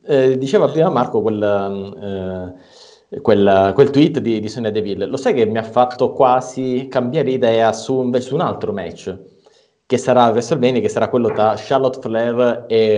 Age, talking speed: 30-49, 180 wpm